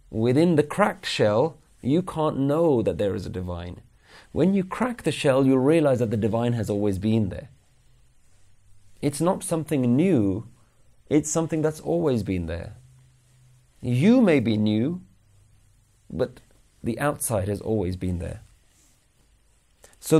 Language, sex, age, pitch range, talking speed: English, male, 30-49, 100-130 Hz, 145 wpm